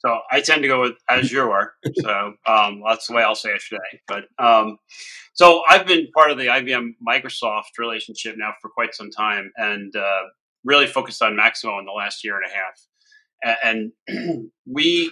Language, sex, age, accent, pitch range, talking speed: English, male, 30-49, American, 110-145 Hz, 185 wpm